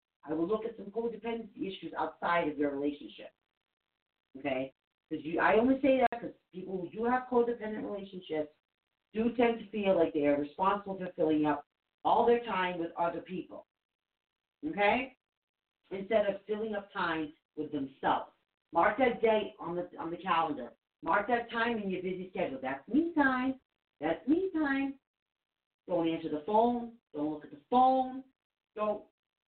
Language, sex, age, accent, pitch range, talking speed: English, female, 50-69, American, 175-270 Hz, 155 wpm